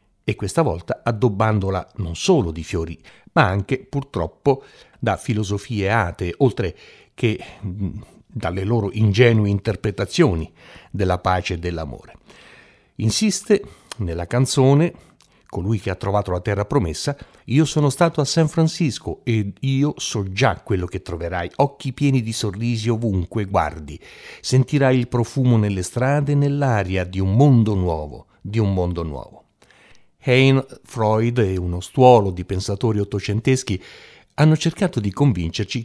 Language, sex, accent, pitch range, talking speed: Italian, male, native, 95-130 Hz, 135 wpm